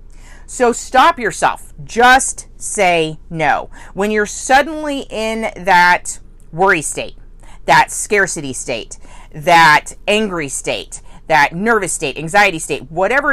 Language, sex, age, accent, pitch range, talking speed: English, female, 40-59, American, 155-230 Hz, 115 wpm